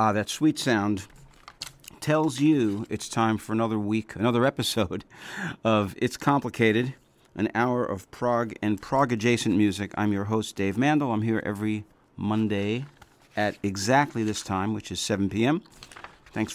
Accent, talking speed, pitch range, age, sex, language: American, 150 wpm, 95-120 Hz, 50-69, male, English